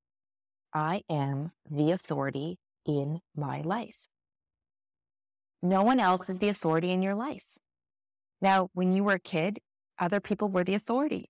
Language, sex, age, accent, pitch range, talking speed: English, female, 30-49, American, 155-215 Hz, 145 wpm